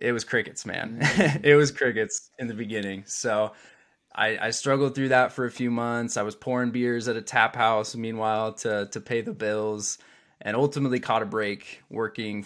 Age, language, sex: 20-39, English, male